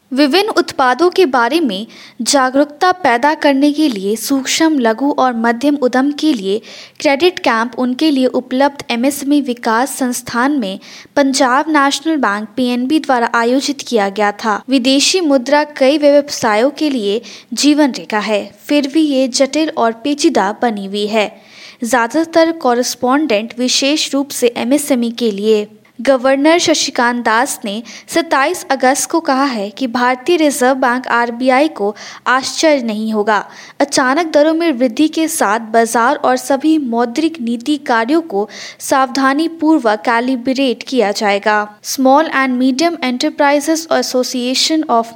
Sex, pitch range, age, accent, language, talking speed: female, 235-295 Hz, 20-39, native, Hindi, 135 wpm